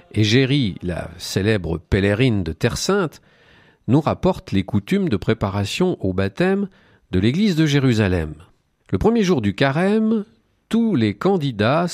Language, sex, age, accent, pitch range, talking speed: French, male, 50-69, French, 95-155 Hz, 135 wpm